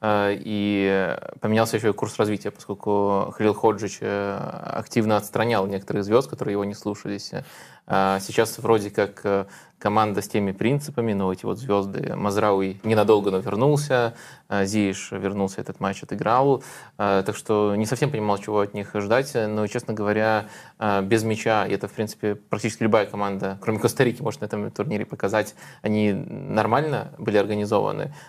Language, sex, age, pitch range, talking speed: Russian, male, 20-39, 100-110 Hz, 150 wpm